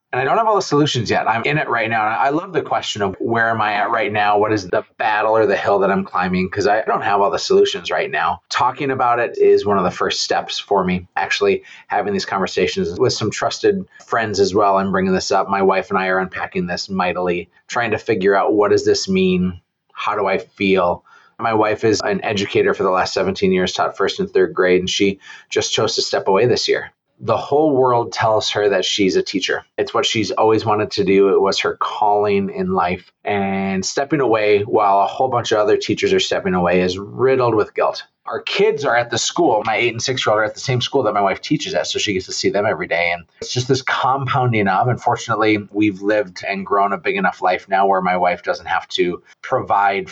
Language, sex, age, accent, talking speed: English, male, 30-49, American, 240 wpm